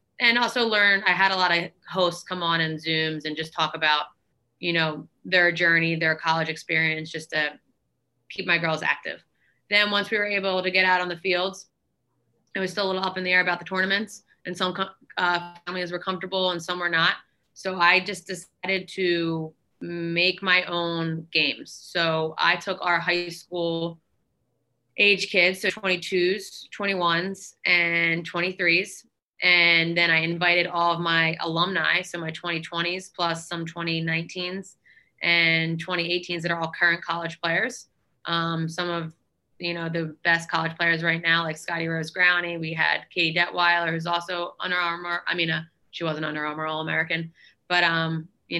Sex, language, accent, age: female, English, American, 20-39